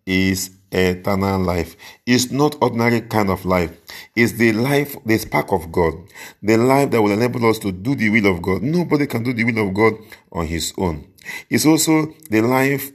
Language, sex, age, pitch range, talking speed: English, male, 50-69, 95-135 Hz, 195 wpm